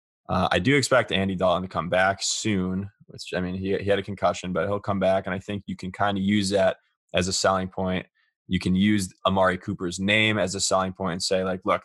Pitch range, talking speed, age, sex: 90-100 Hz, 250 wpm, 20-39, male